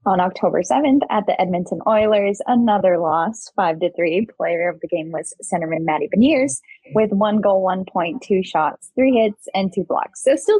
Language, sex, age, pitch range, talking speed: English, female, 10-29, 175-235 Hz, 190 wpm